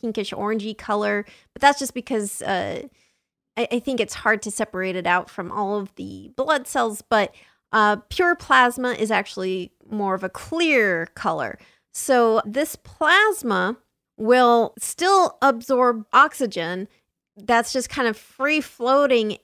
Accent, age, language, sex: American, 30-49, English, female